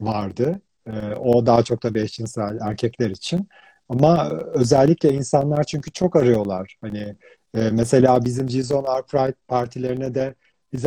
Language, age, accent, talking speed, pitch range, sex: Turkish, 40-59, native, 125 wpm, 120-150 Hz, male